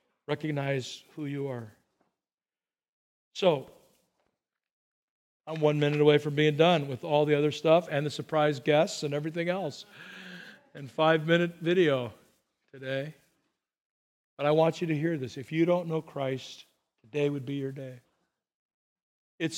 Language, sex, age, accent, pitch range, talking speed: English, male, 50-69, American, 150-180 Hz, 140 wpm